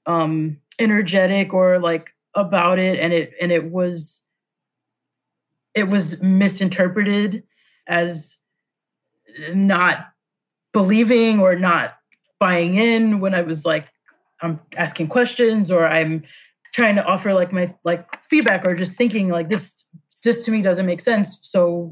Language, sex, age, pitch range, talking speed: English, female, 20-39, 165-195 Hz, 135 wpm